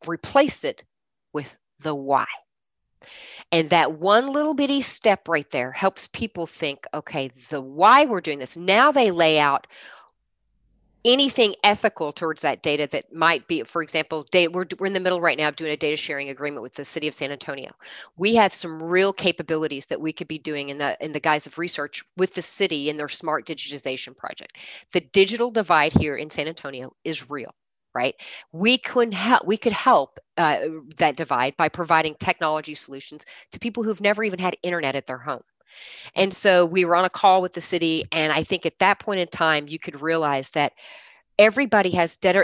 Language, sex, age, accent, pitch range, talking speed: English, female, 40-59, American, 150-195 Hz, 195 wpm